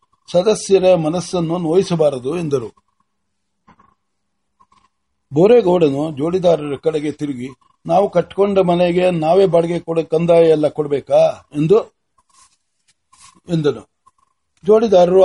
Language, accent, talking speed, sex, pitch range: Kannada, native, 60 wpm, male, 155-185 Hz